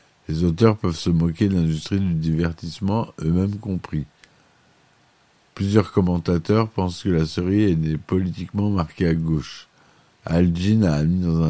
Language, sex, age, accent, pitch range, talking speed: French, male, 50-69, French, 80-95 Hz, 140 wpm